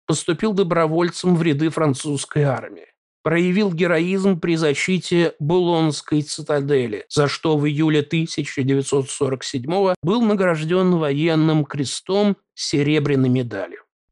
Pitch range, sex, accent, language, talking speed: 145-185 Hz, male, native, Russian, 100 wpm